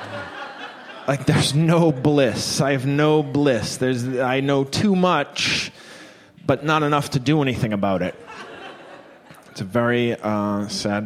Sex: male